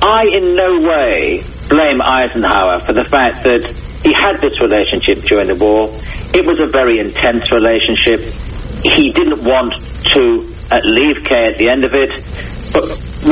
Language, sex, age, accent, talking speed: English, male, 60-79, British, 160 wpm